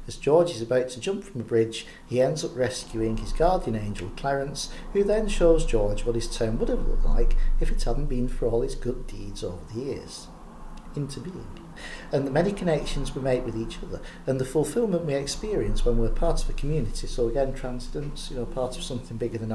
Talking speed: 220 wpm